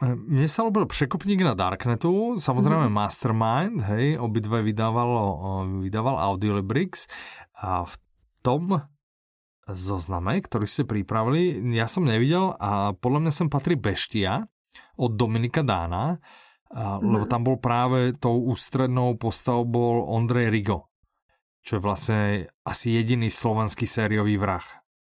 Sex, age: male, 30-49